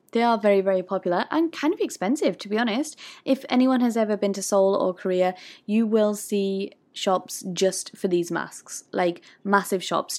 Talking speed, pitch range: 190 wpm, 185-235 Hz